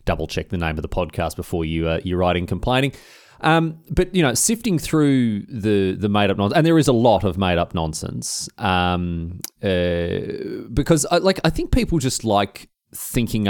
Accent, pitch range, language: Australian, 95-125 Hz, English